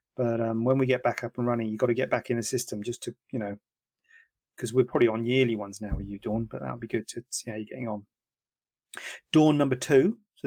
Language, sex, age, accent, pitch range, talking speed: English, male, 40-59, British, 120-155 Hz, 265 wpm